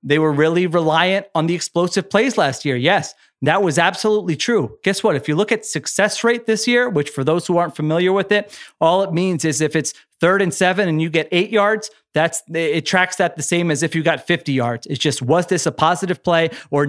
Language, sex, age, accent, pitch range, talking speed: English, male, 30-49, American, 155-205 Hz, 240 wpm